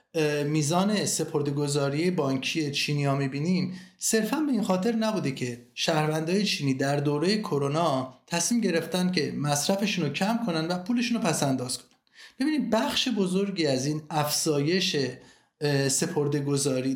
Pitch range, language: 150-195 Hz, Persian